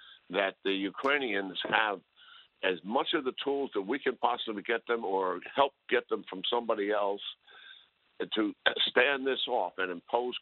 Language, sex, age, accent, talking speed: English, male, 50-69, American, 160 wpm